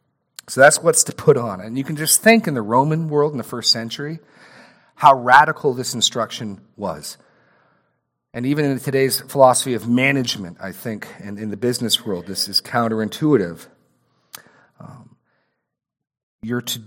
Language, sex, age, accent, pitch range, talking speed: English, male, 40-59, American, 115-145 Hz, 155 wpm